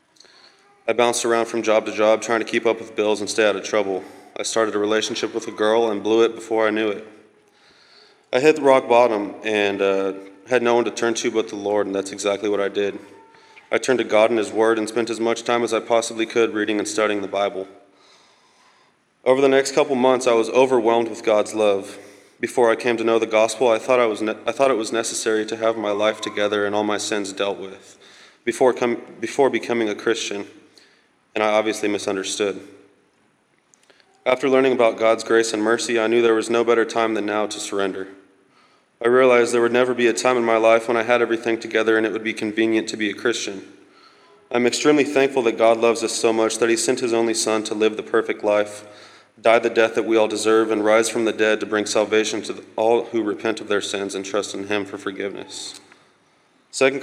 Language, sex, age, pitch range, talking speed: English, male, 20-39, 105-115 Hz, 225 wpm